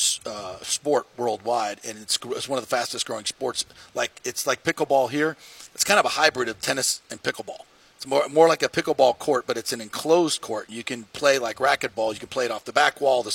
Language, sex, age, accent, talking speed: English, male, 40-59, American, 235 wpm